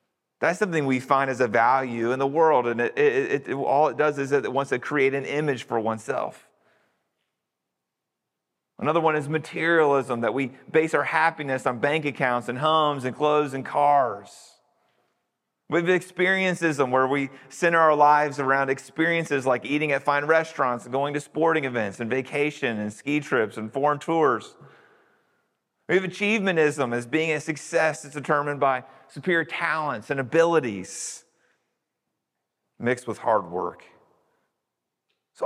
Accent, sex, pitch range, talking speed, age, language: American, male, 135-170 Hz, 150 wpm, 30-49, English